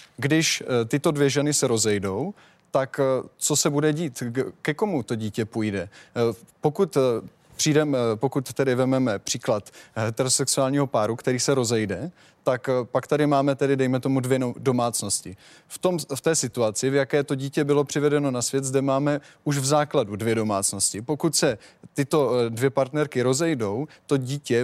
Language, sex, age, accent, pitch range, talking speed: Czech, male, 20-39, native, 125-150 Hz, 155 wpm